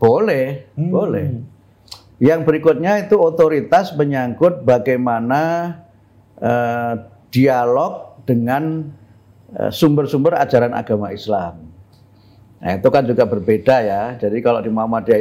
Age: 50-69